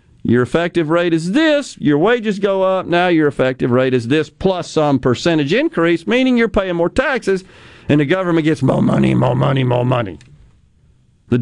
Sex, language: male, English